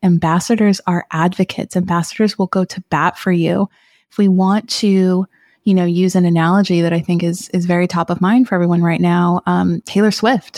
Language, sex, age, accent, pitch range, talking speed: English, female, 20-39, American, 170-200 Hz, 200 wpm